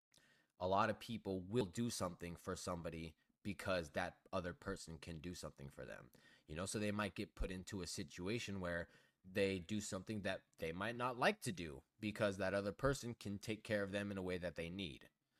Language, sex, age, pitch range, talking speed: English, male, 20-39, 95-120 Hz, 210 wpm